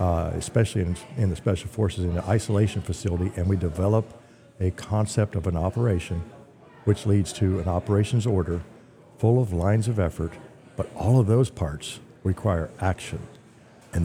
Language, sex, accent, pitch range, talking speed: English, male, American, 90-115 Hz, 160 wpm